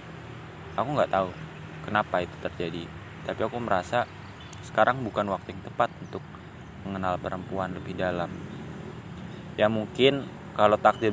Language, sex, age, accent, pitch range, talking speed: Indonesian, male, 20-39, native, 105-160 Hz, 125 wpm